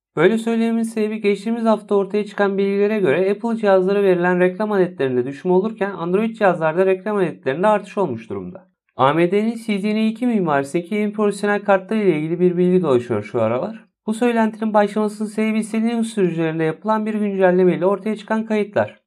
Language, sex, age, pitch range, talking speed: Turkish, male, 50-69, 180-210 Hz, 150 wpm